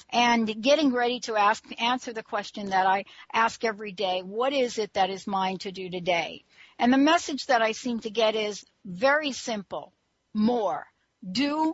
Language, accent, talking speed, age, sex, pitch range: English, American, 180 wpm, 60-79, female, 200-245 Hz